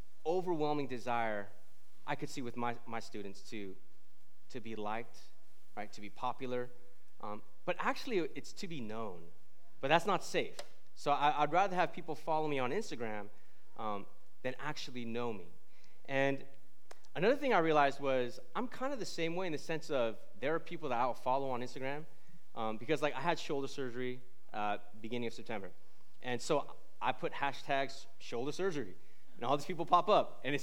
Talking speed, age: 180 wpm, 30-49